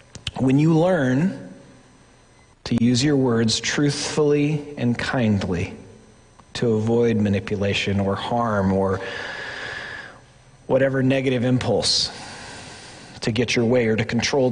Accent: American